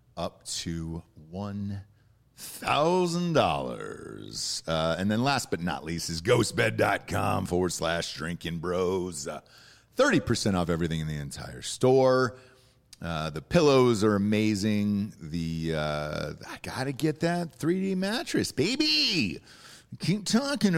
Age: 40-59